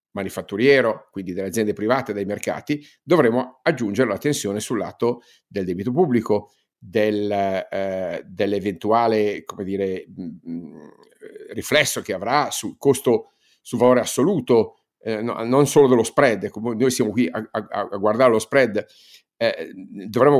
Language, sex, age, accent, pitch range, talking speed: Italian, male, 50-69, native, 110-140 Hz, 140 wpm